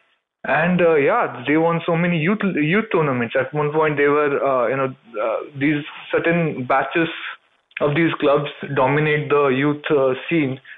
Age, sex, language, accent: 20-39, male, English, Indian